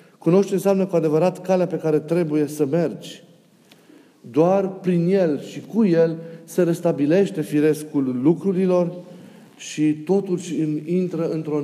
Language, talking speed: Romanian, 125 wpm